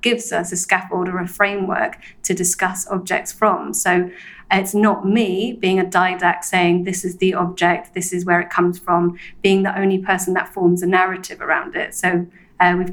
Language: English